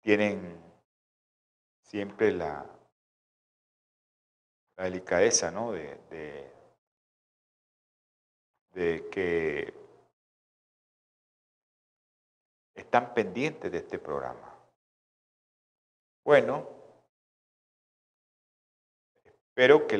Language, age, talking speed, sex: Spanish, 50-69, 55 wpm, male